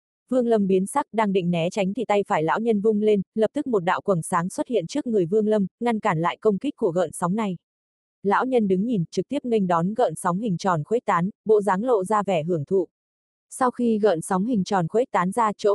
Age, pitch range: 20-39, 180-225 Hz